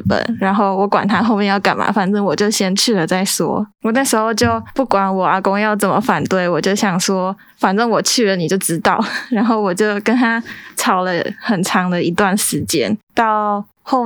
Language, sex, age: Chinese, female, 20-39